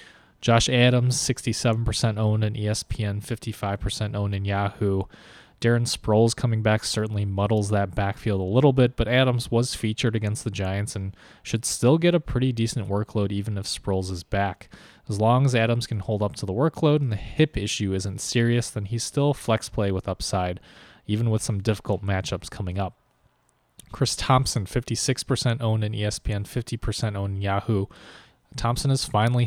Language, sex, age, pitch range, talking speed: English, male, 20-39, 100-120 Hz, 170 wpm